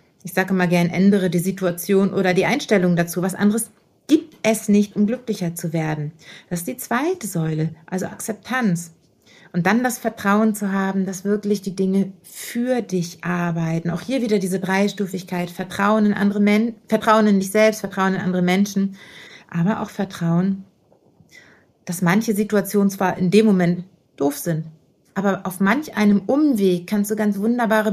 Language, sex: German, female